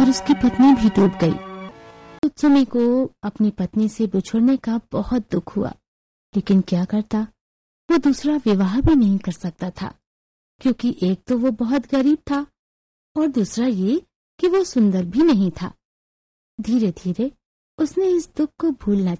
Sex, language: female, Hindi